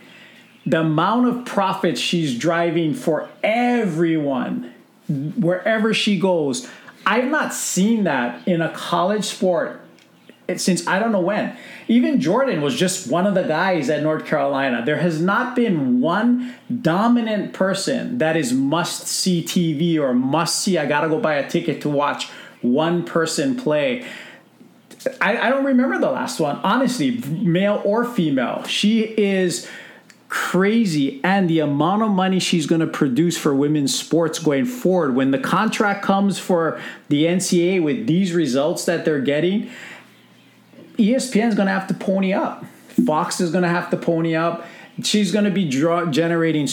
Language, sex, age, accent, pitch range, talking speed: English, male, 40-59, American, 160-220 Hz, 155 wpm